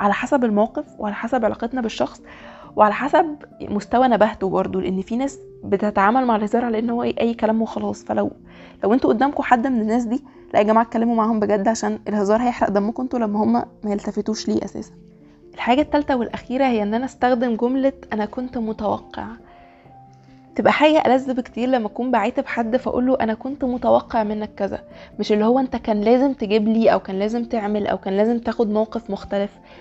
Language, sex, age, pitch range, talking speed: Arabic, female, 20-39, 210-250 Hz, 185 wpm